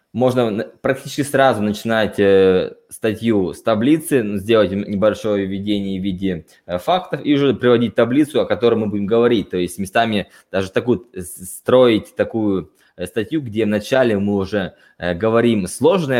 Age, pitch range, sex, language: 20-39, 90-115 Hz, male, Russian